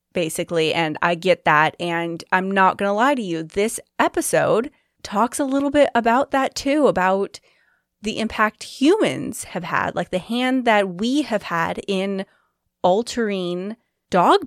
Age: 20-39